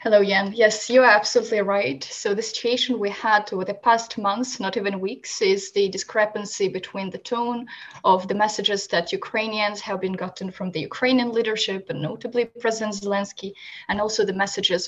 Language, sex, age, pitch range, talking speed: English, female, 20-39, 195-235 Hz, 180 wpm